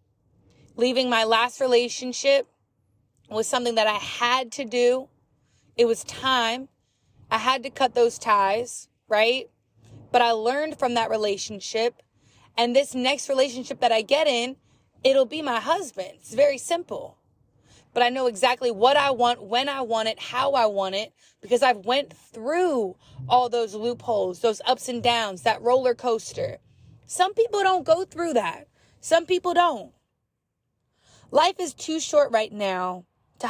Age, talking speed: 20-39, 160 wpm